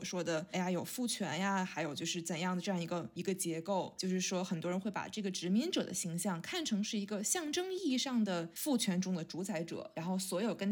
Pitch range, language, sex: 180-225 Hz, Chinese, female